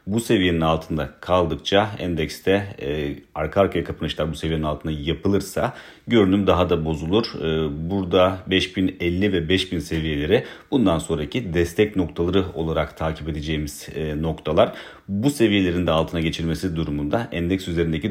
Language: Turkish